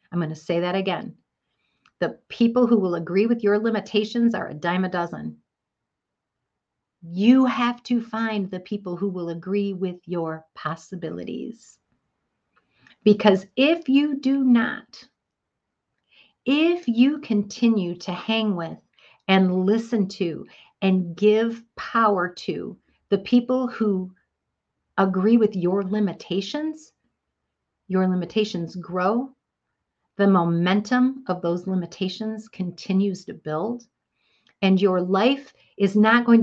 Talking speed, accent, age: 120 wpm, American, 50-69